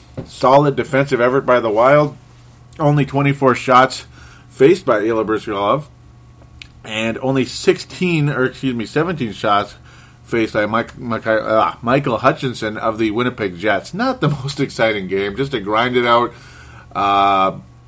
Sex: male